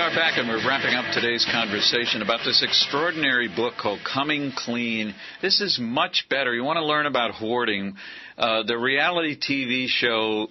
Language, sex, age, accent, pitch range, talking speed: English, male, 50-69, American, 105-135 Hz, 170 wpm